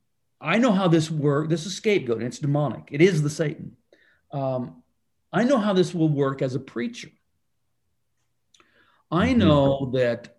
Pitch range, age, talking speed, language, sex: 120-170 Hz, 50-69, 160 wpm, English, male